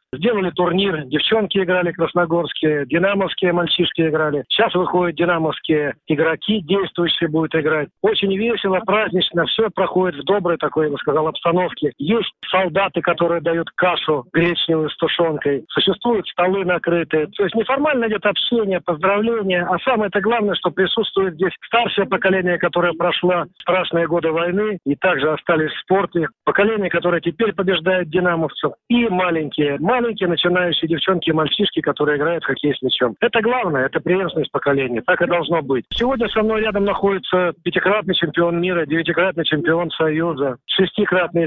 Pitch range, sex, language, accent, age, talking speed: 155-195 Hz, male, Russian, native, 50-69, 145 wpm